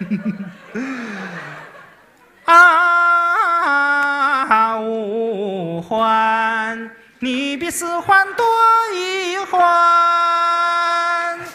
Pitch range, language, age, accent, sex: 225-345 Hz, Chinese, 30-49, native, male